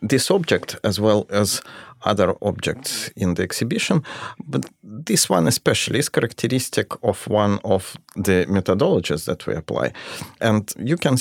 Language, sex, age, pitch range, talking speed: English, male, 40-59, 90-115 Hz, 145 wpm